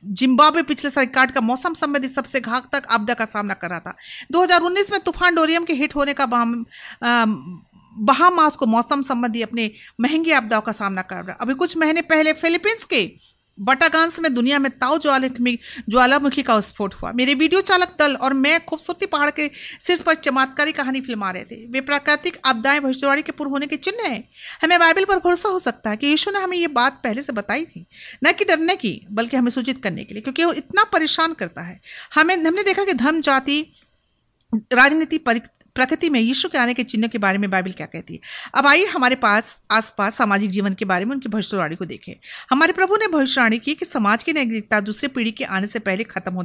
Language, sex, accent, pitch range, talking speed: Hindi, female, native, 225-315 Hz, 210 wpm